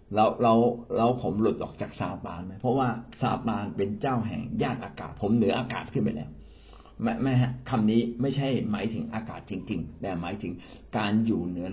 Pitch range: 100-125 Hz